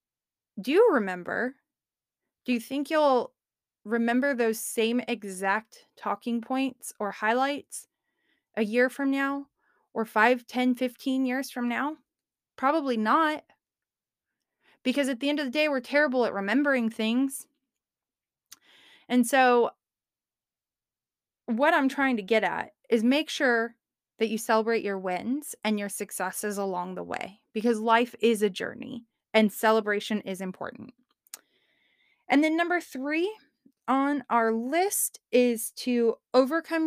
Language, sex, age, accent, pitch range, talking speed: English, female, 20-39, American, 220-270 Hz, 130 wpm